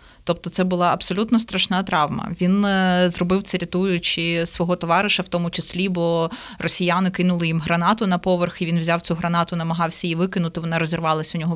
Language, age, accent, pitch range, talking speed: Ukrainian, 20-39, native, 170-200 Hz, 175 wpm